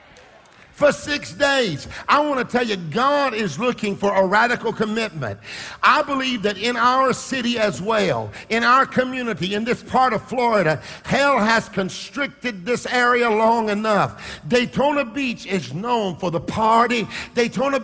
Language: English